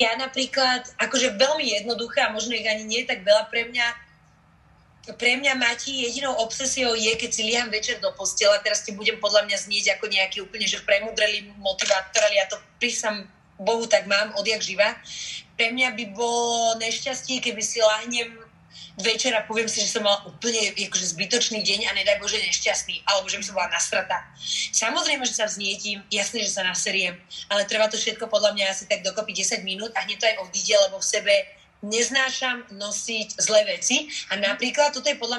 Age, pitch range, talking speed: 30-49, 210-255 Hz, 185 wpm